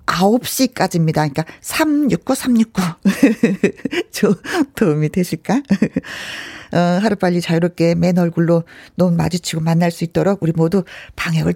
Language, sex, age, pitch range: Korean, female, 40-59, 185-265 Hz